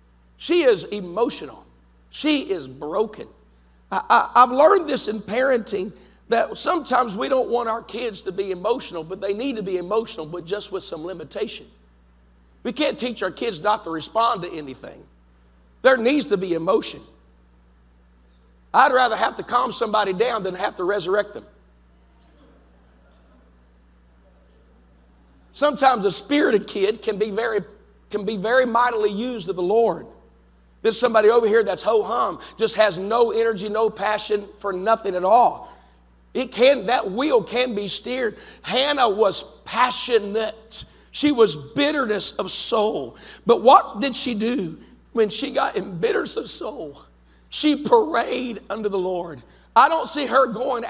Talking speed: 150 wpm